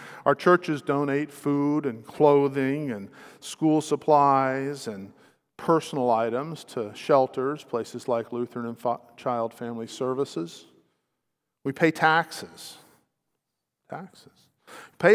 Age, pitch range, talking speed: 50-69, 125-150 Hz, 105 wpm